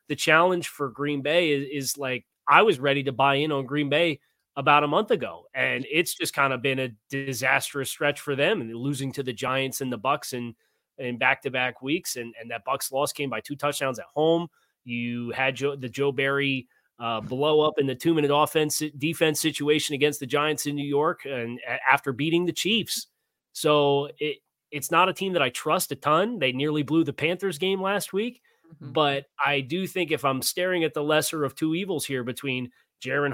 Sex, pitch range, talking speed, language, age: male, 130-150 Hz, 215 wpm, English, 30-49